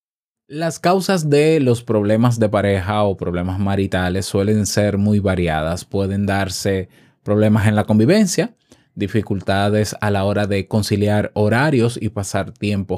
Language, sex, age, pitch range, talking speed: Spanish, male, 20-39, 100-140 Hz, 140 wpm